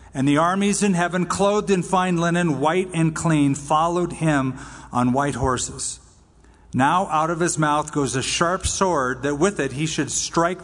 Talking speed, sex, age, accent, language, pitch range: 180 wpm, male, 50-69, American, English, 140-175 Hz